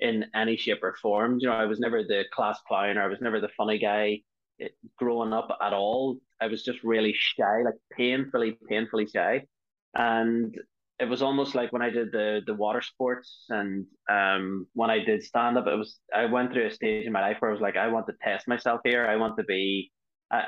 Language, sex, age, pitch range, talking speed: English, male, 20-39, 105-120 Hz, 225 wpm